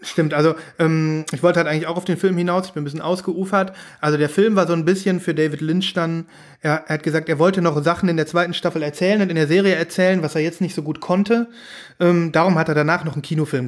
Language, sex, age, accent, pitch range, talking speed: German, male, 30-49, German, 155-190 Hz, 270 wpm